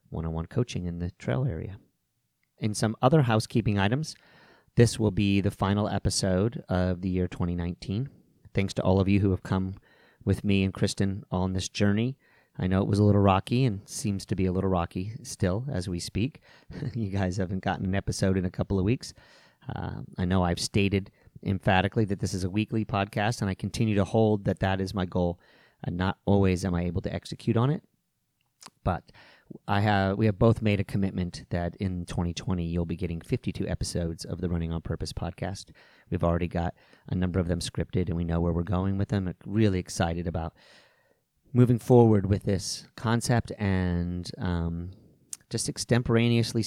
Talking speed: 190 wpm